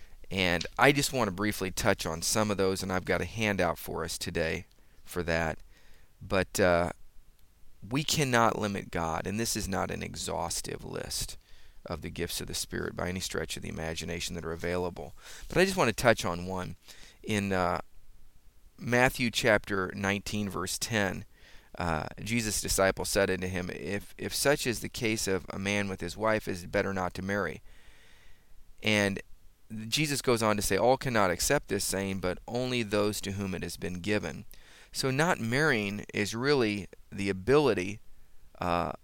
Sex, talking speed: male, 180 wpm